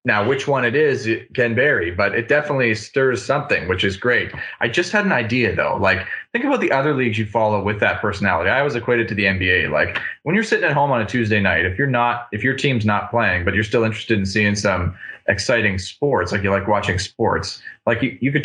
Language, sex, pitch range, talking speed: English, male, 110-140 Hz, 245 wpm